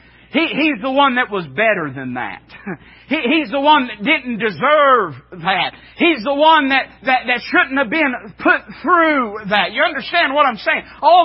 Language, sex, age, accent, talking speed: English, male, 40-59, American, 175 wpm